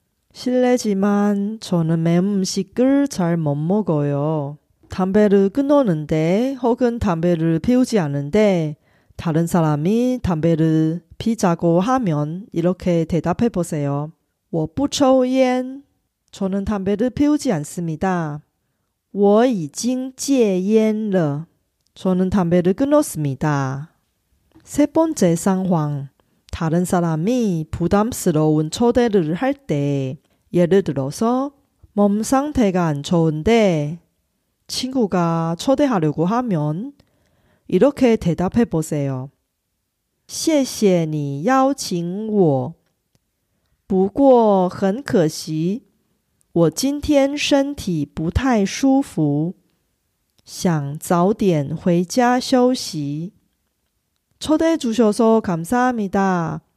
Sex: female